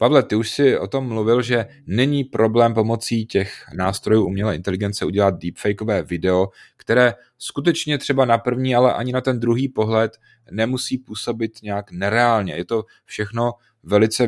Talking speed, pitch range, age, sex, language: 155 wpm, 95-115 Hz, 30-49, male, Czech